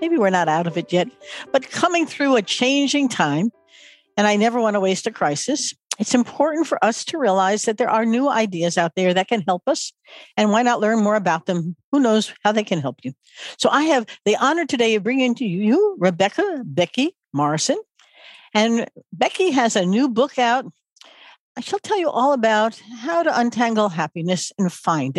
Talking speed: 200 wpm